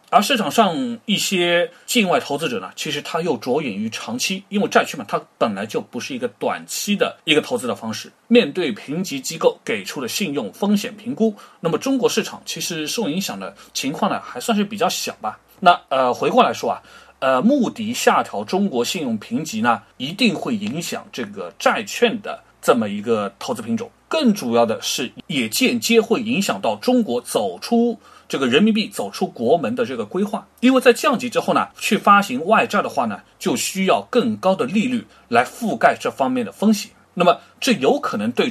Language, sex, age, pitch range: Chinese, male, 30-49, 215-245 Hz